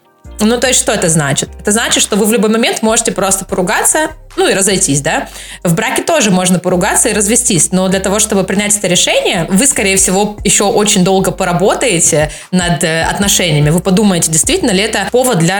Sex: female